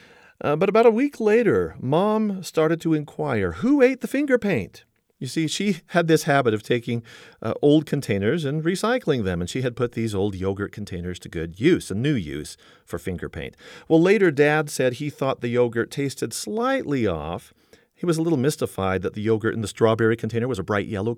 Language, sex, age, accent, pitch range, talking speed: English, male, 40-59, American, 105-165 Hz, 205 wpm